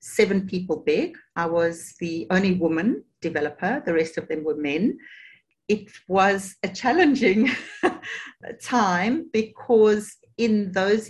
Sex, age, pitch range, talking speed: female, 40-59, 170-205 Hz, 125 wpm